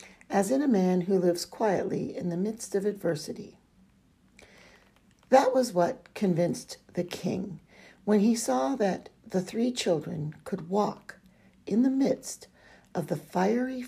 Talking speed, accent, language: 145 wpm, American, English